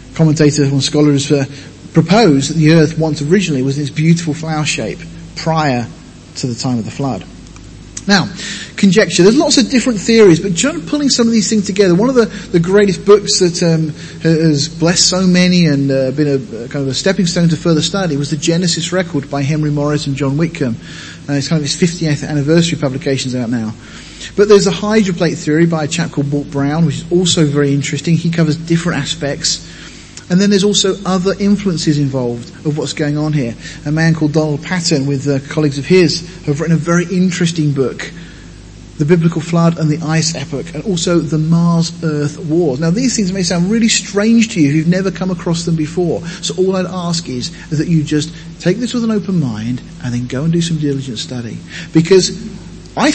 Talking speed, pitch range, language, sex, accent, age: 205 wpm, 145-180 Hz, English, male, British, 40-59